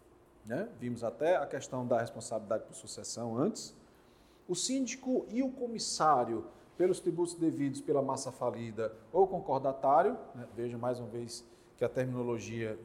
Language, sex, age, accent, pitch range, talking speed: Portuguese, male, 40-59, Brazilian, 120-180 Hz, 145 wpm